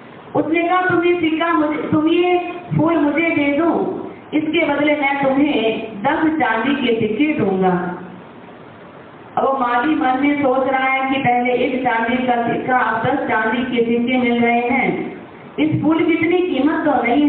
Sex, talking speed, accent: female, 135 wpm, native